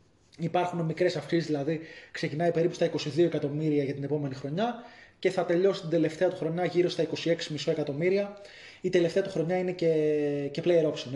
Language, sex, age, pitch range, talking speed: Greek, male, 20-39, 150-195 Hz, 180 wpm